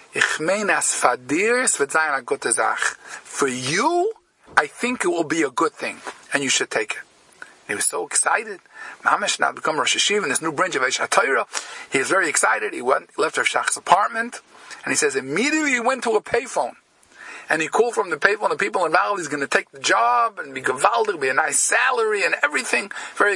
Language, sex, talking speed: English, male, 195 wpm